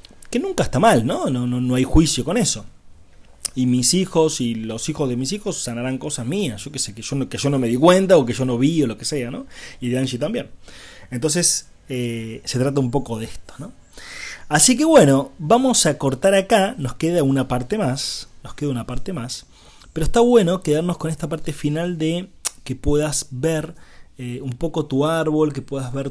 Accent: Argentinian